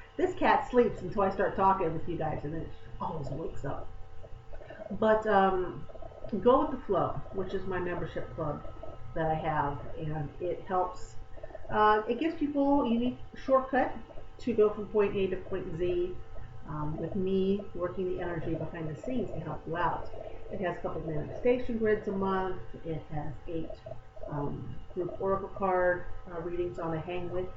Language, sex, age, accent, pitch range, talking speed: English, female, 40-59, American, 160-210 Hz, 180 wpm